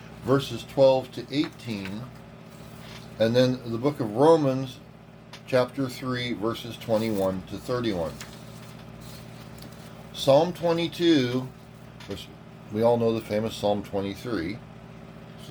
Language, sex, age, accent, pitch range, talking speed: English, male, 40-59, American, 105-130 Hz, 105 wpm